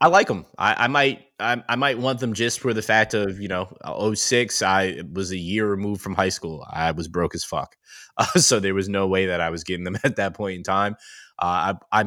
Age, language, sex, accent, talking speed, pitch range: 20-39, Finnish, male, American, 255 wpm, 90-110 Hz